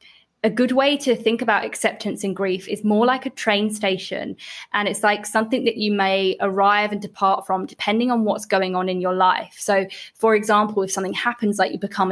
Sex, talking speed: female, 215 wpm